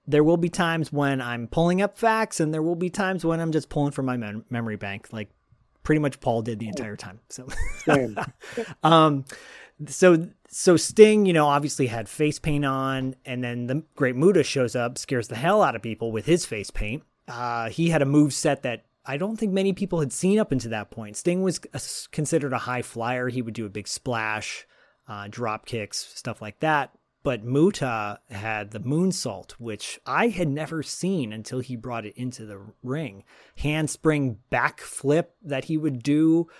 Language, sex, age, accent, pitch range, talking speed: English, male, 30-49, American, 120-170 Hz, 195 wpm